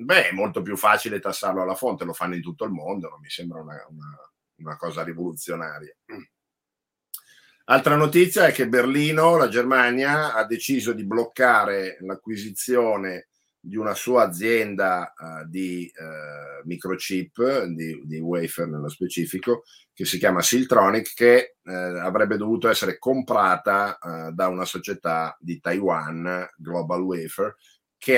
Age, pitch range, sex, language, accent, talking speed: 50-69, 80-100 Hz, male, Italian, native, 140 wpm